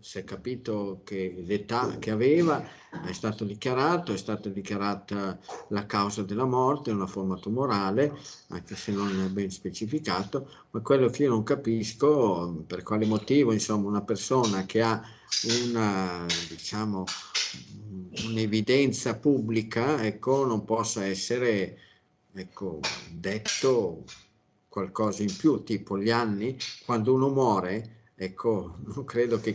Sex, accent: male, native